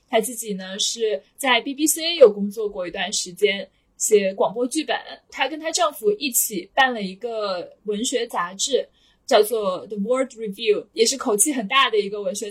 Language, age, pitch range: Chinese, 20-39, 220-290 Hz